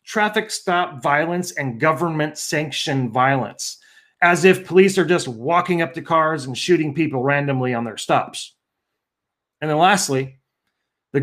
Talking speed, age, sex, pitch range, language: 145 wpm, 30-49, male, 145-180 Hz, English